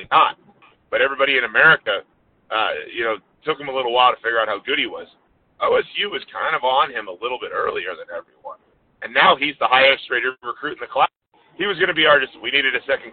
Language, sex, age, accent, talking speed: English, male, 30-49, American, 235 wpm